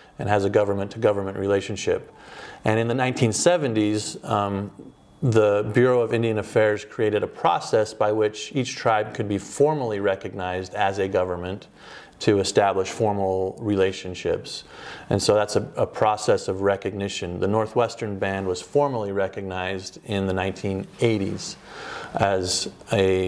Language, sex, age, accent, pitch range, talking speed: English, male, 30-49, American, 95-110 Hz, 140 wpm